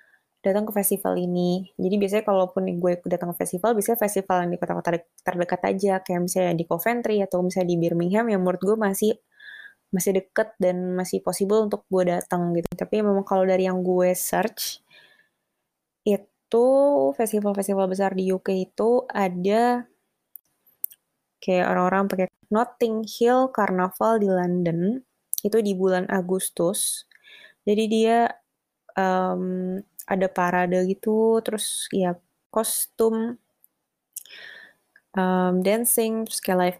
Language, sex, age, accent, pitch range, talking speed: Indonesian, female, 20-39, native, 180-215 Hz, 130 wpm